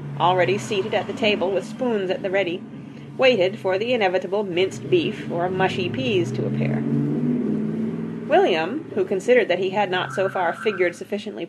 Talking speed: 165 wpm